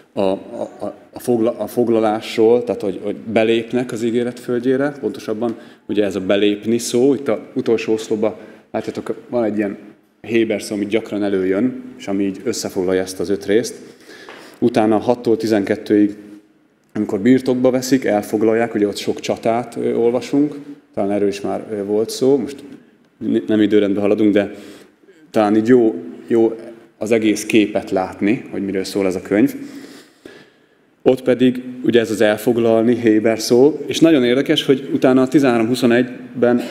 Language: Hungarian